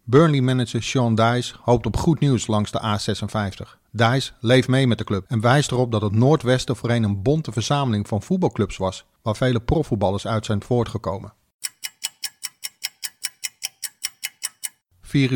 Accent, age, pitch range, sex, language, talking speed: Dutch, 50-69, 105-130 Hz, male, Dutch, 140 wpm